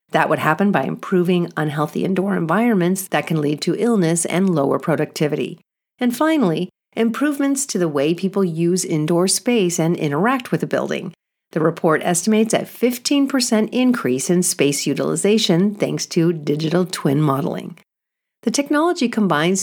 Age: 50-69